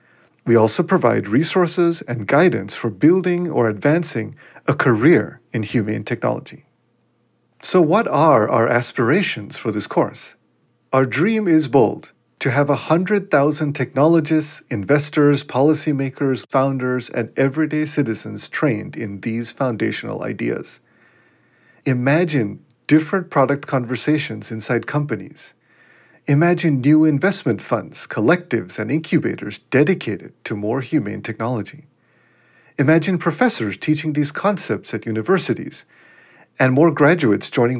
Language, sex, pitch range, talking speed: English, male, 120-160 Hz, 115 wpm